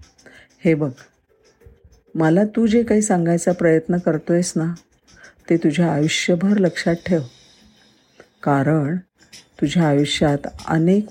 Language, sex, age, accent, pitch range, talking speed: Marathi, female, 50-69, native, 145-185 Hz, 110 wpm